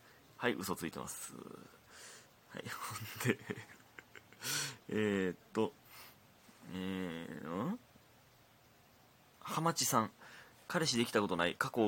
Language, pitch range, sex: Japanese, 100-135 Hz, male